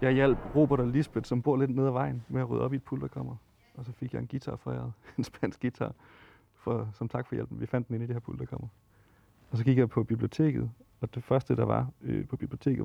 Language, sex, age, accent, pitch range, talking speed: Danish, male, 40-59, native, 110-130 Hz, 260 wpm